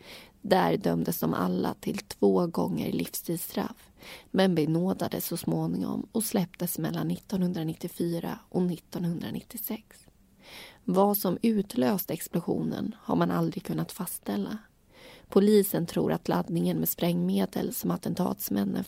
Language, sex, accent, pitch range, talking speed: Swedish, female, native, 165-200 Hz, 110 wpm